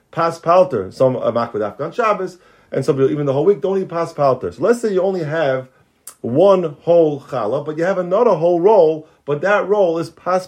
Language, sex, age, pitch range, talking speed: English, male, 30-49, 140-185 Hz, 220 wpm